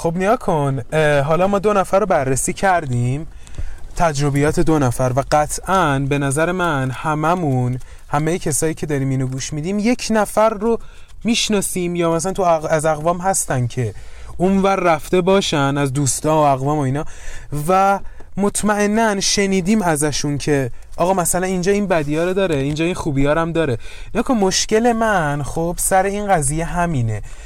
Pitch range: 150-200 Hz